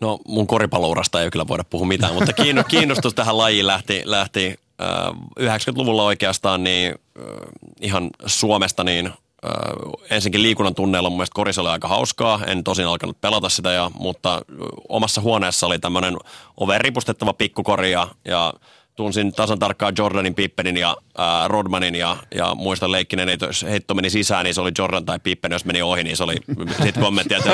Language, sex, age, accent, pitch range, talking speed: Finnish, male, 30-49, native, 90-105 Hz, 165 wpm